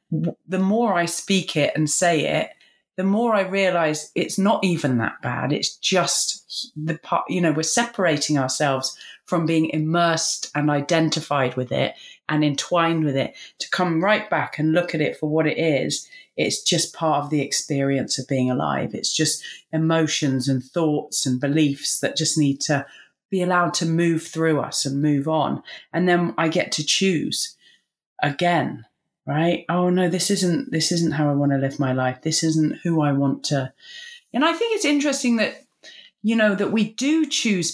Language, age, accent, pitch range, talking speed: English, 30-49, British, 150-190 Hz, 185 wpm